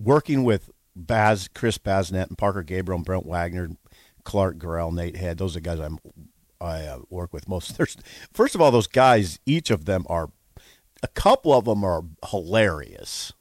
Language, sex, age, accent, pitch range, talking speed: English, male, 50-69, American, 85-120 Hz, 180 wpm